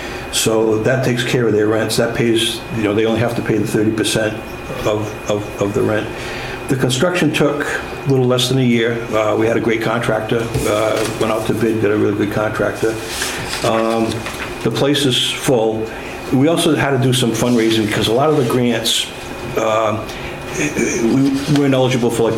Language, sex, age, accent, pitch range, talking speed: English, male, 60-79, American, 110-125 Hz, 195 wpm